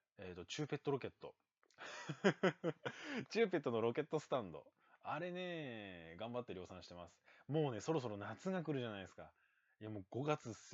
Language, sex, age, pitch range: Japanese, male, 20-39, 90-135 Hz